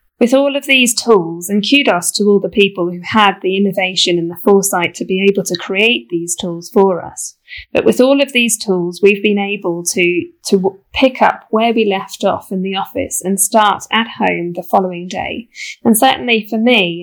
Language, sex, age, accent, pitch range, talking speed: English, female, 10-29, British, 190-225 Hz, 205 wpm